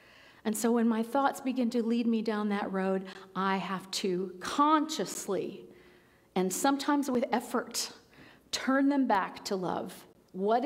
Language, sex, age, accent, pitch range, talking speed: English, female, 40-59, American, 210-275 Hz, 145 wpm